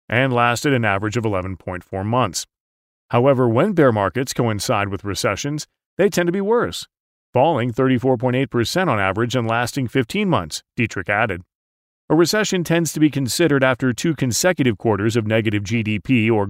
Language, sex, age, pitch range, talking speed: English, male, 40-59, 110-150 Hz, 155 wpm